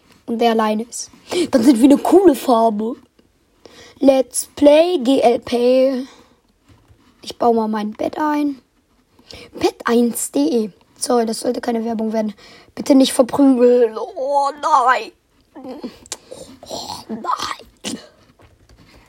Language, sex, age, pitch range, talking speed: German, female, 20-39, 240-285 Hz, 105 wpm